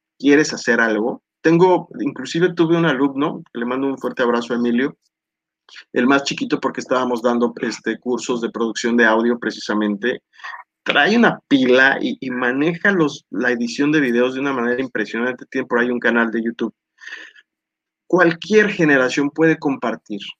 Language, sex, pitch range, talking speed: English, male, 120-155 Hz, 160 wpm